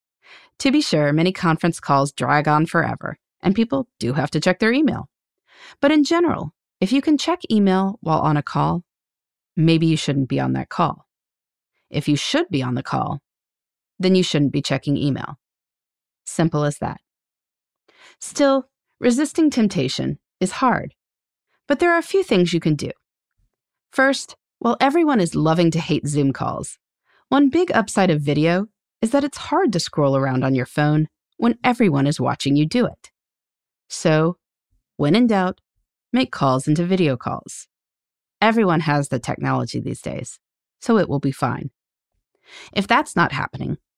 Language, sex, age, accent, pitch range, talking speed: English, female, 30-49, American, 145-245 Hz, 165 wpm